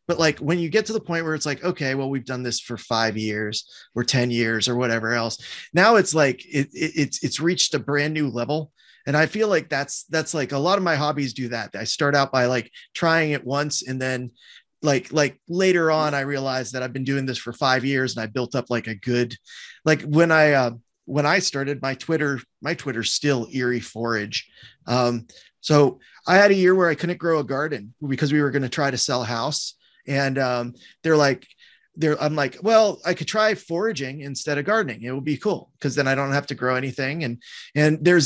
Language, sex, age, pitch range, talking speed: English, male, 30-49, 130-165 Hz, 230 wpm